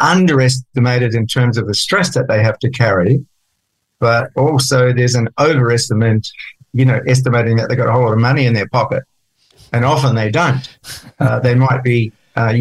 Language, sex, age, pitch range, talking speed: English, male, 50-69, 115-135 Hz, 185 wpm